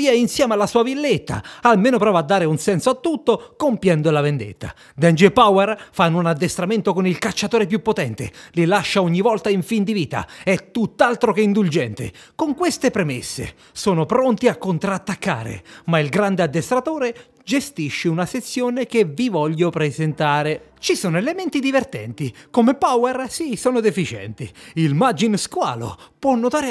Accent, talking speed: native, 155 wpm